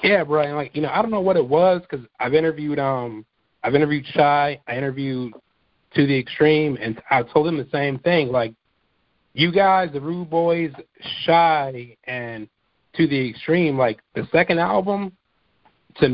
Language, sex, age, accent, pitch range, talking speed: English, male, 40-59, American, 125-160 Hz, 170 wpm